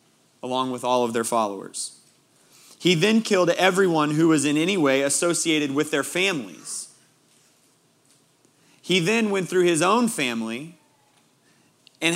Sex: male